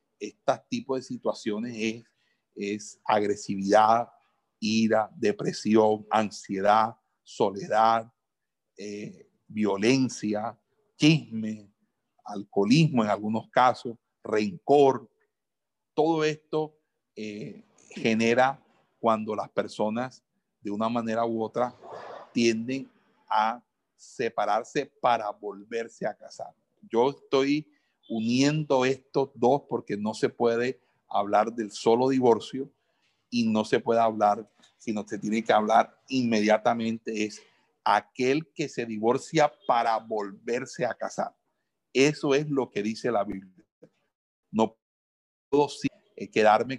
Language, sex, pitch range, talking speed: Spanish, male, 110-135 Hz, 105 wpm